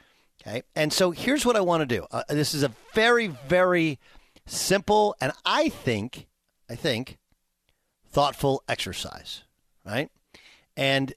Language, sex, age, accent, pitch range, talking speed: English, male, 50-69, American, 125-180 Hz, 135 wpm